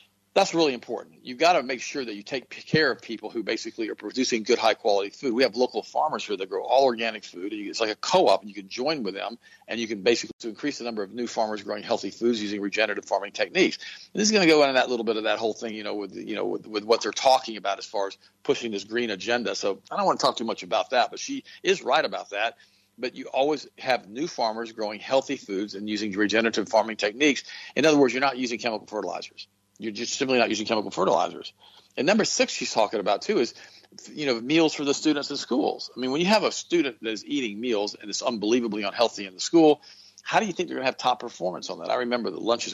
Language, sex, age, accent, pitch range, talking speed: English, male, 50-69, American, 105-155 Hz, 260 wpm